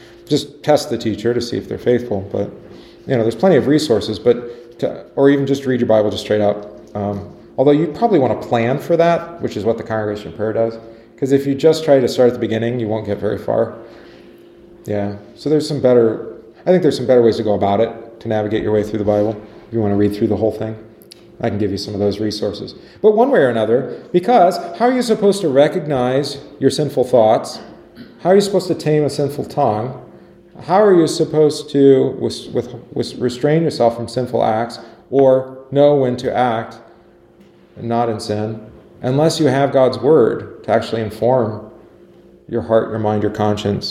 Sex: male